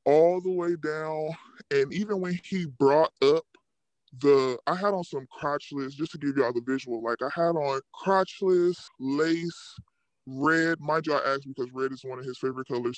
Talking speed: 195 wpm